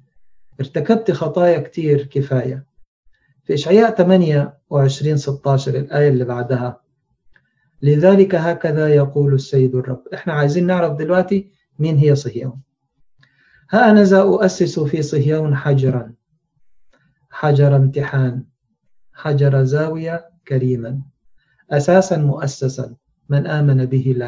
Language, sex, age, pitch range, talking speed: Arabic, male, 40-59, 135-155 Hz, 100 wpm